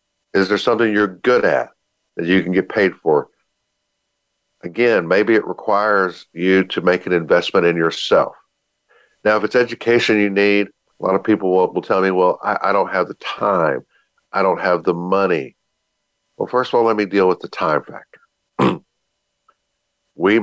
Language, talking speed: English, 180 wpm